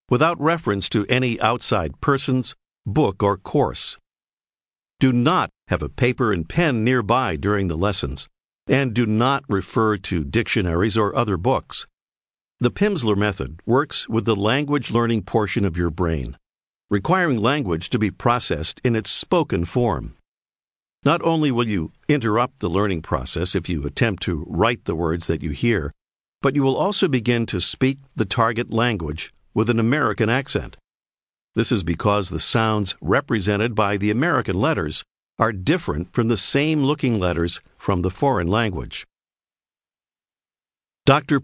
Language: English